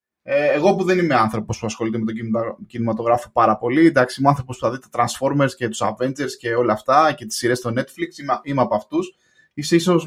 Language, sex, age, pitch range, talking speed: Greek, male, 20-39, 120-175 Hz, 215 wpm